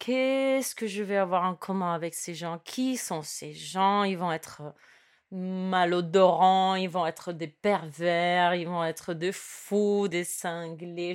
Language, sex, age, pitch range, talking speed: French, female, 30-49, 175-220 Hz, 160 wpm